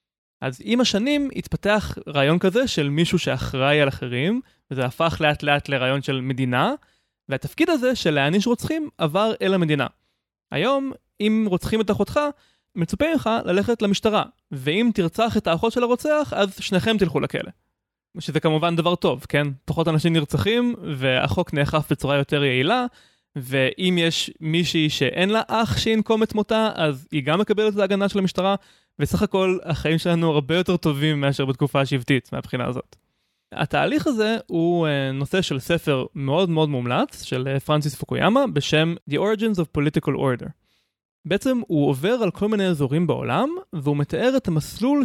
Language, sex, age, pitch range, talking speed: Hebrew, male, 20-39, 145-215 Hz, 155 wpm